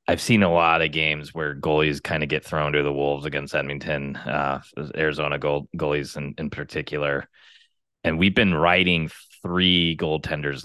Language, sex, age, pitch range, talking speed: English, male, 20-39, 75-90 Hz, 170 wpm